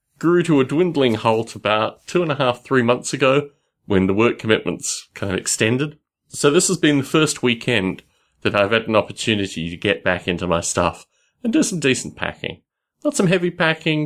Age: 30-49